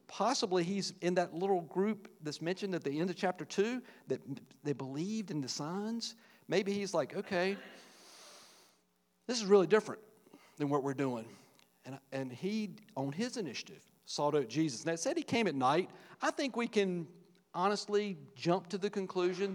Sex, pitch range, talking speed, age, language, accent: male, 150-205 Hz, 175 wpm, 50-69, English, American